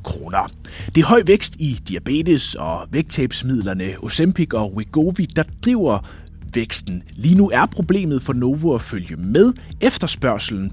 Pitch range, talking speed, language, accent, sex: 105-165 Hz, 135 wpm, Danish, native, male